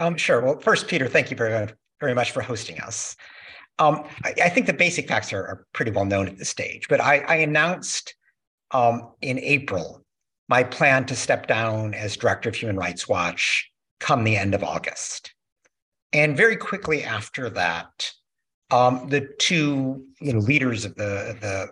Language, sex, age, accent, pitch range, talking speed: English, male, 50-69, American, 110-145 Hz, 175 wpm